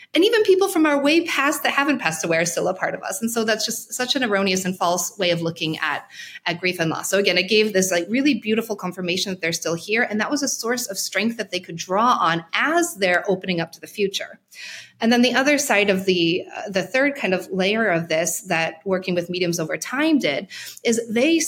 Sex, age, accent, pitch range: female, 30-49, American, 175-230 Hz